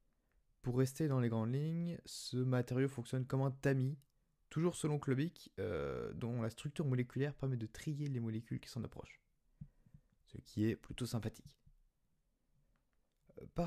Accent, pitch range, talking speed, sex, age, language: French, 115-150 Hz, 150 wpm, male, 20-39, French